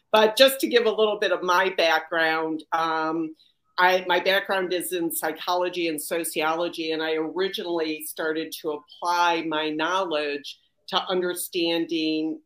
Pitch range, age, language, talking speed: 160-195 Hz, 50-69, English, 135 wpm